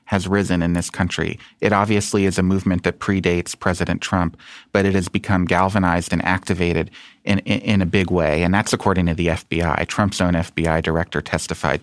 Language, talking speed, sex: English, 195 wpm, male